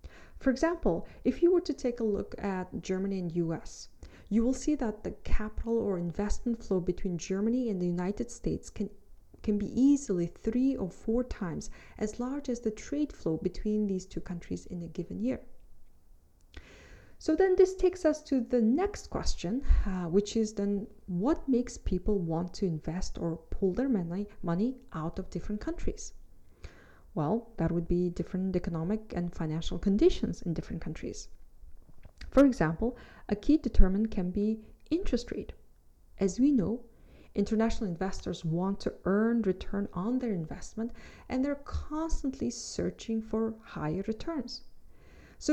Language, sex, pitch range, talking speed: English, female, 185-250 Hz, 155 wpm